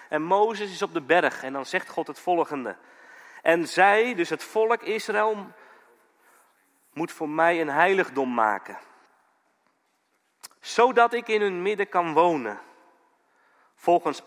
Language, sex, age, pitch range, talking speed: Dutch, male, 40-59, 170-235 Hz, 135 wpm